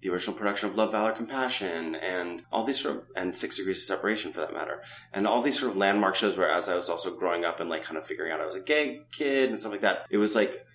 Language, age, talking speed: English, 30-49, 290 wpm